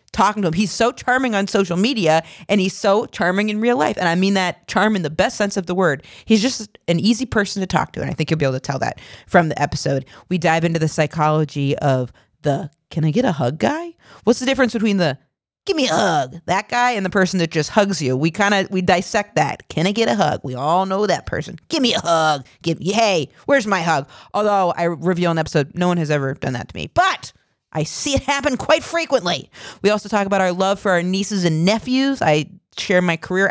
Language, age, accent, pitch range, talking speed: English, 40-59, American, 160-205 Hz, 250 wpm